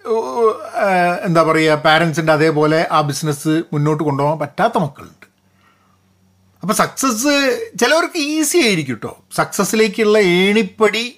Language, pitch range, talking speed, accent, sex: Malayalam, 150-220 Hz, 95 wpm, native, male